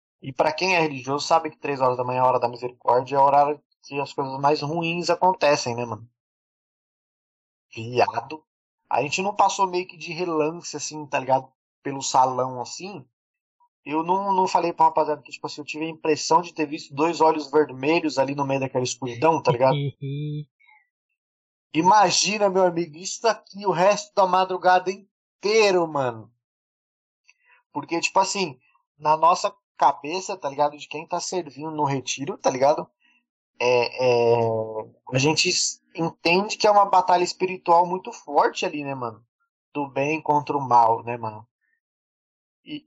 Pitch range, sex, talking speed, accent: 140-185 Hz, male, 165 wpm, Brazilian